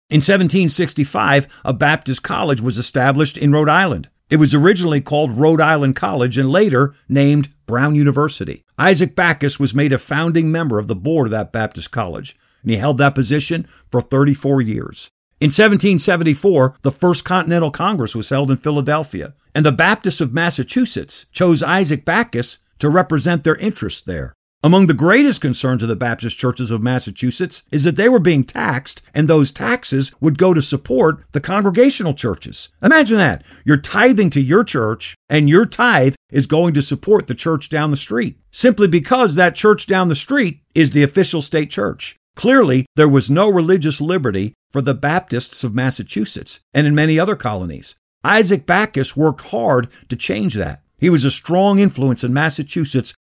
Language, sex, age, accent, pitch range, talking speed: English, male, 50-69, American, 135-175 Hz, 175 wpm